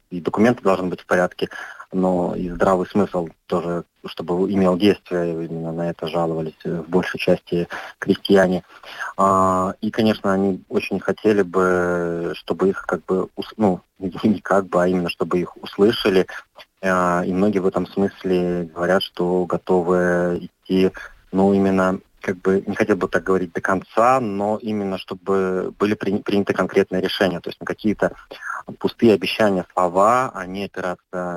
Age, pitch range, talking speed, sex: 30-49, 90-100 Hz, 145 wpm, male